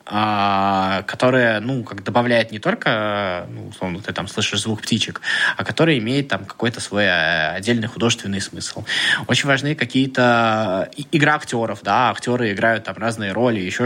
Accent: native